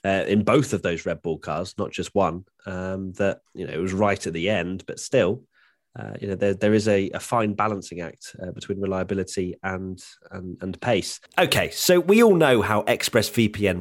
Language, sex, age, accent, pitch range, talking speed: English, male, 30-49, British, 115-185 Hz, 210 wpm